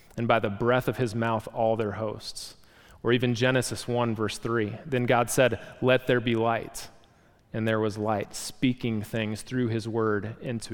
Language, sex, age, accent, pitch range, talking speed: English, male, 30-49, American, 110-130 Hz, 185 wpm